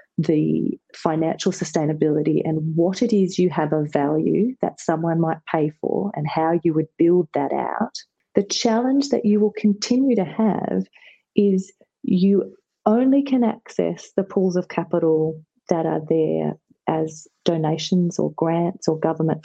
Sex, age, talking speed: female, 30-49, 150 wpm